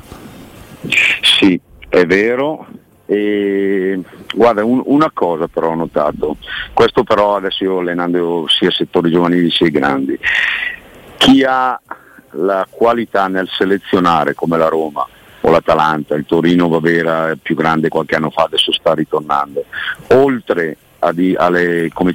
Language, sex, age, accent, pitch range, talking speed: Italian, male, 50-69, native, 80-105 Hz, 135 wpm